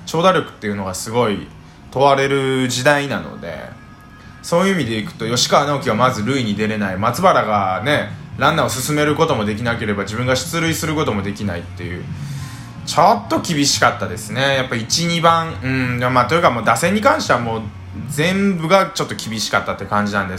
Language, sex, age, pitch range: Japanese, male, 20-39, 110-165 Hz